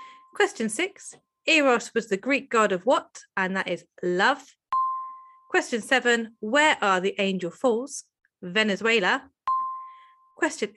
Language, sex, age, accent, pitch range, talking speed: English, female, 30-49, British, 205-325 Hz, 125 wpm